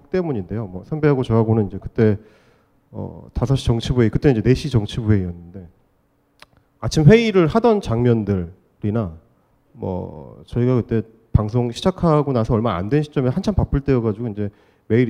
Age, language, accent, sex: 30-49, Korean, native, male